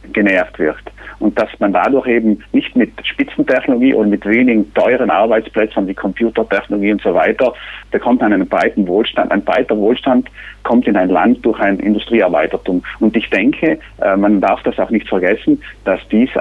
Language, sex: German, male